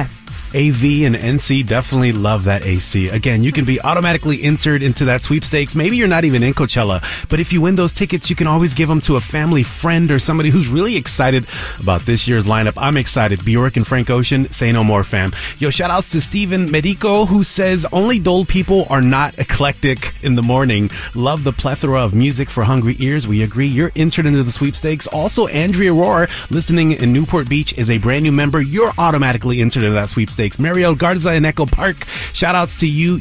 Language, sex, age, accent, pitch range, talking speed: English, male, 30-49, American, 125-170 Hz, 205 wpm